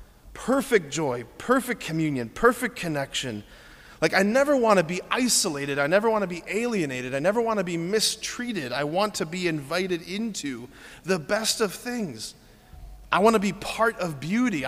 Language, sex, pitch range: English, male, 150-225 Hz